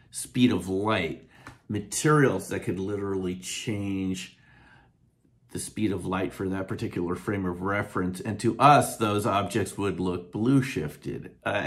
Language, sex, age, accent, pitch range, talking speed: English, male, 40-59, American, 90-125 Hz, 145 wpm